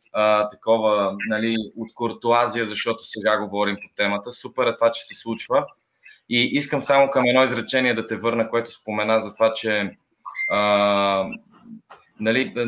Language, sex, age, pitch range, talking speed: Bulgarian, male, 20-39, 105-125 Hz, 145 wpm